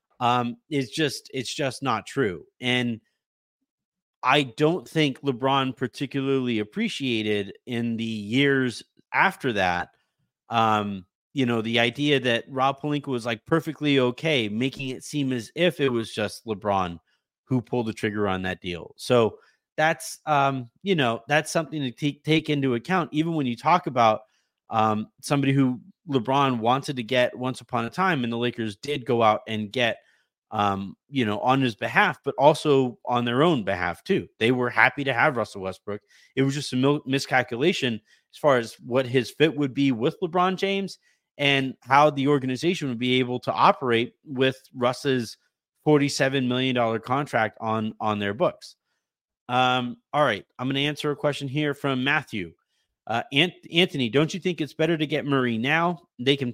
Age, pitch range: 30-49, 120-145 Hz